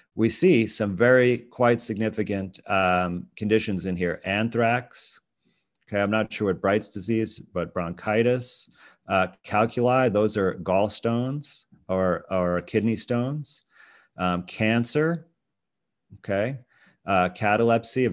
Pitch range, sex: 95-115 Hz, male